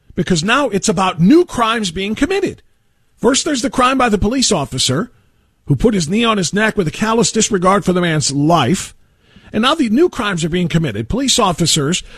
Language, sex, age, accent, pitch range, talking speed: English, male, 40-59, American, 165-250 Hz, 200 wpm